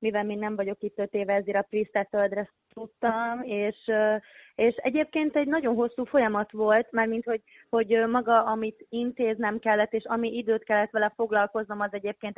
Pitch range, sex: 205-235 Hz, female